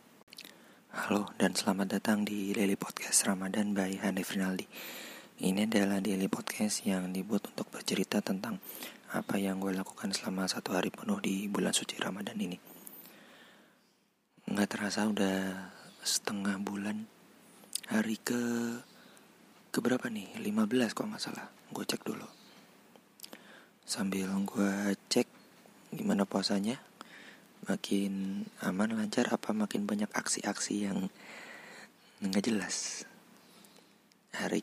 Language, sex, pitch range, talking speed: Indonesian, male, 95-120 Hz, 115 wpm